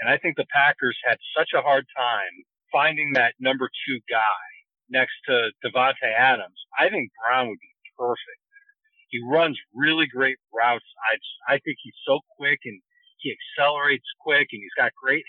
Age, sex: 50-69, male